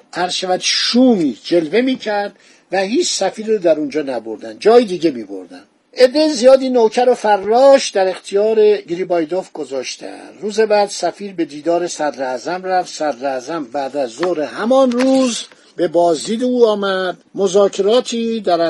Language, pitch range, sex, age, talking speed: Persian, 155-215 Hz, male, 50-69, 150 wpm